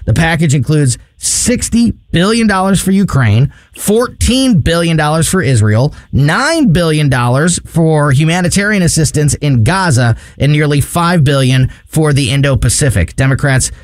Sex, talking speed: male, 115 wpm